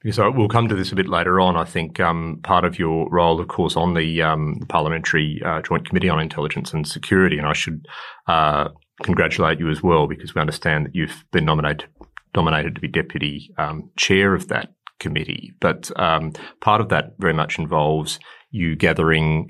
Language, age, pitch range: English, 30-49, 80-95 Hz